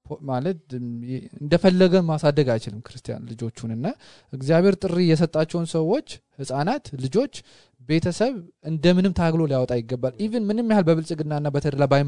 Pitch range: 115-145 Hz